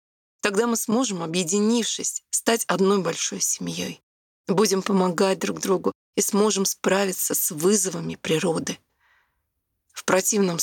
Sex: female